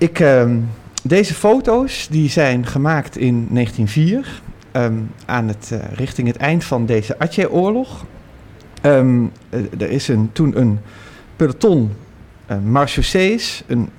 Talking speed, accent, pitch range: 95 wpm, Dutch, 115-160 Hz